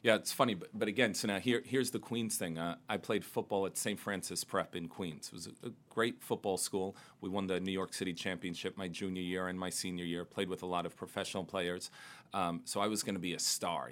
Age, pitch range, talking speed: 40-59, 90-100 Hz, 260 wpm